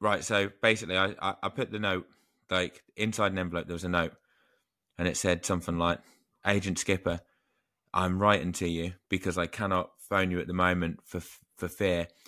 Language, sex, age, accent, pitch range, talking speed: English, male, 20-39, British, 90-105 Hz, 185 wpm